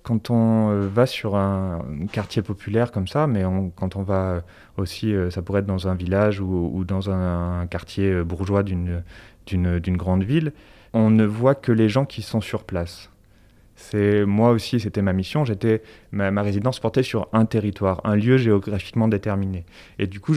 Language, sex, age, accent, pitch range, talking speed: French, male, 30-49, French, 95-115 Hz, 185 wpm